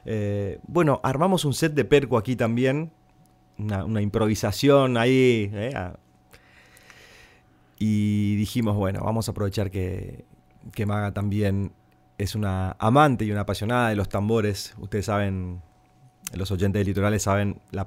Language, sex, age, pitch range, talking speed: Spanish, male, 30-49, 95-110 Hz, 140 wpm